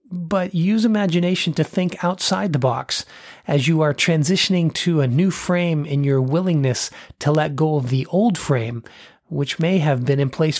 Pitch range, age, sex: 140-170 Hz, 30-49, male